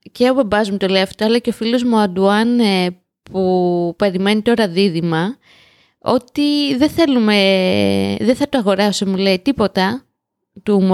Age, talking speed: 20-39, 155 wpm